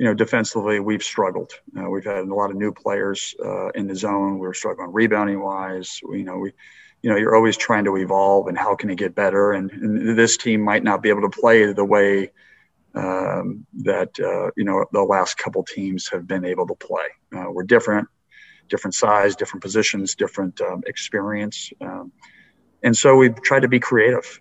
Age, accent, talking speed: 50-69, American, 205 wpm